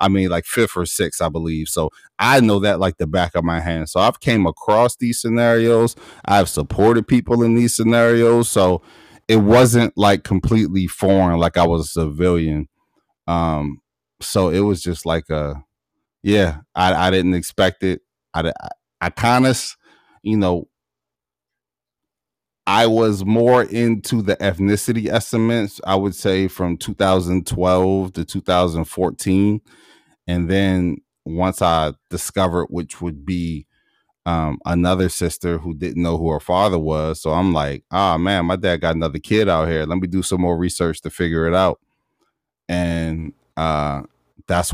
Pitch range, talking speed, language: 80-95 Hz, 160 wpm, English